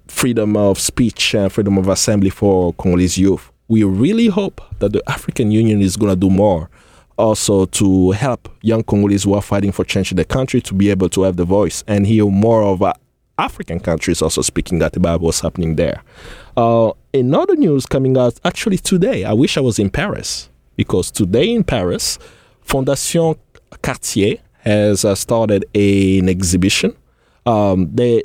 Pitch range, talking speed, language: 95-115 Hz, 170 wpm, English